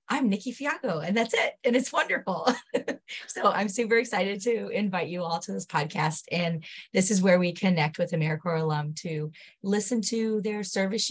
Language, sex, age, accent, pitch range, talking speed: English, female, 30-49, American, 155-190 Hz, 185 wpm